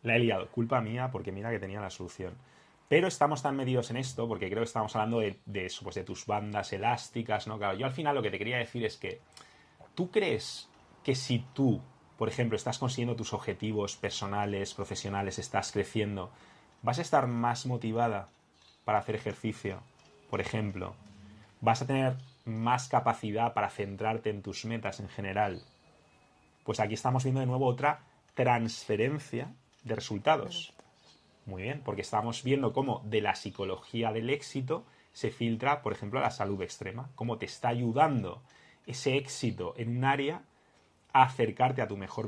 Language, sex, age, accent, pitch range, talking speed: English, male, 30-49, Spanish, 105-130 Hz, 165 wpm